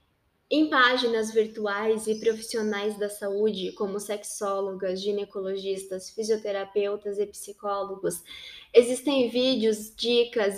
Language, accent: Portuguese, Brazilian